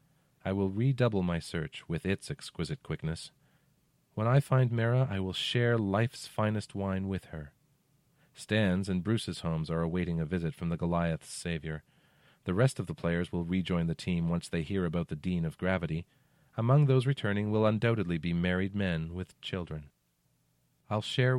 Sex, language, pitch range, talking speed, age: male, English, 85-115 Hz, 175 wpm, 40-59